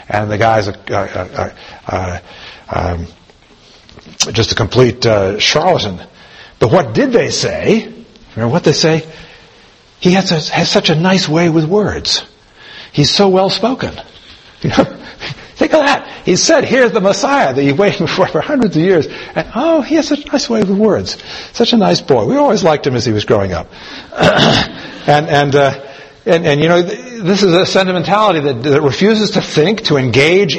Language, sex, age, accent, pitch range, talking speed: English, male, 60-79, American, 130-200 Hz, 190 wpm